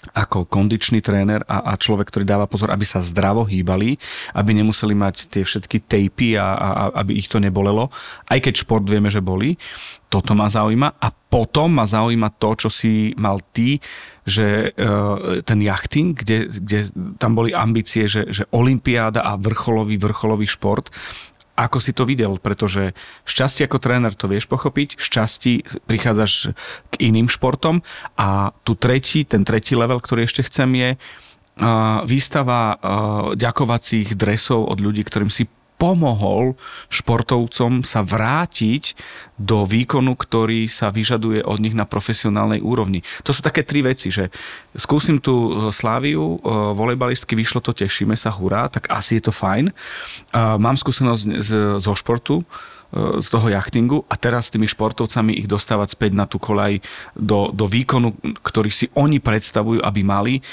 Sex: male